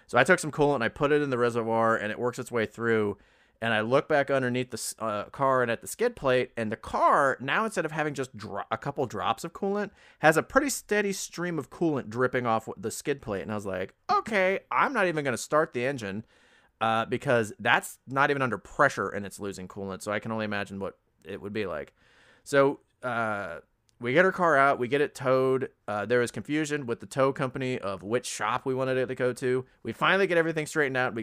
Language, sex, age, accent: English, male, 30-49, American